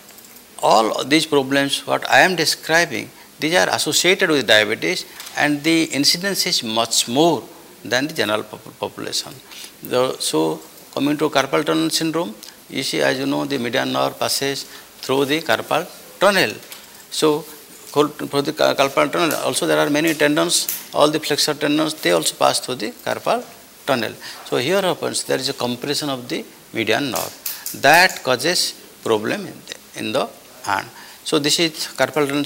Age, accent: 60-79, Indian